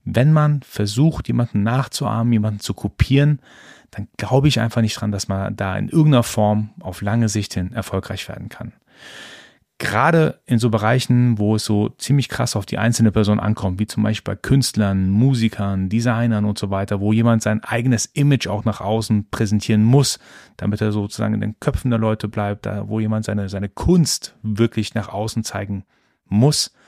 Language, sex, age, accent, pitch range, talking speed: German, male, 30-49, German, 105-120 Hz, 180 wpm